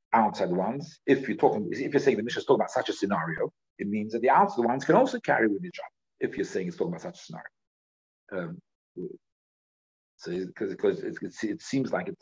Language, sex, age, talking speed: English, male, 50-69, 215 wpm